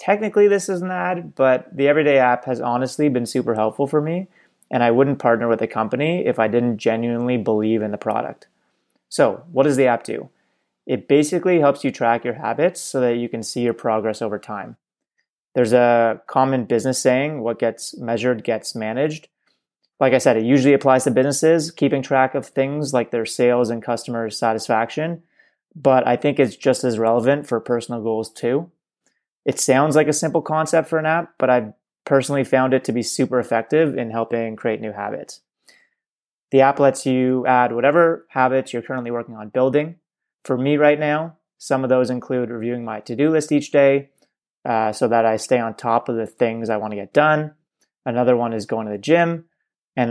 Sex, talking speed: male, 195 wpm